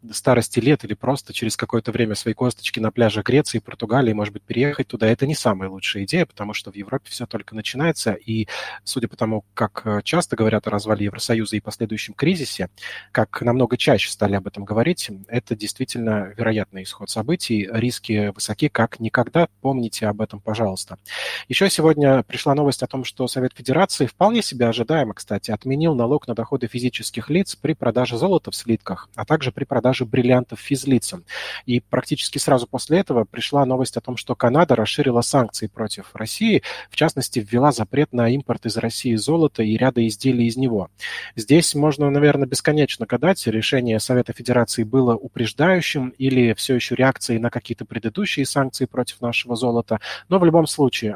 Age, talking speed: 20-39, 175 wpm